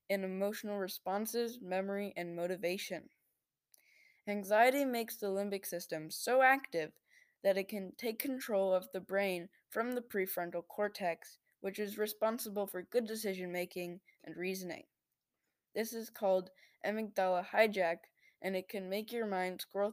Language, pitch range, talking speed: English, 180-215 Hz, 135 wpm